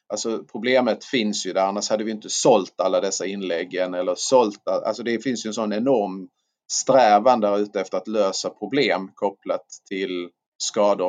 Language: Swedish